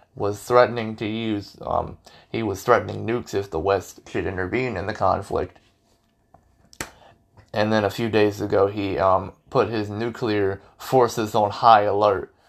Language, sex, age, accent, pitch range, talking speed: English, male, 20-39, American, 100-115 Hz, 155 wpm